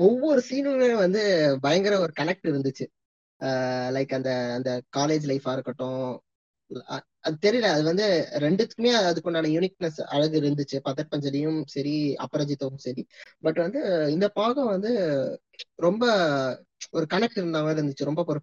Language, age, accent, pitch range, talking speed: Tamil, 20-39, native, 150-200 Hz, 130 wpm